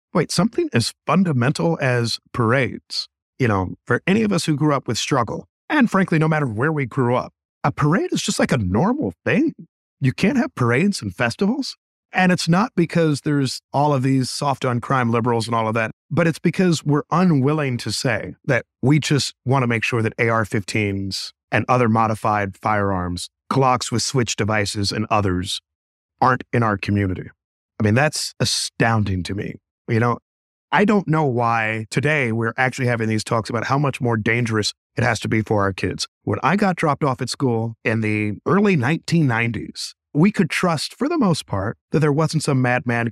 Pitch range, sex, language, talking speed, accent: 110-155 Hz, male, English, 190 wpm, American